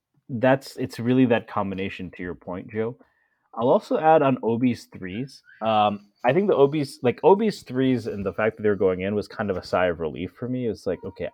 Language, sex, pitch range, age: English, male, 100-135 Hz, 30-49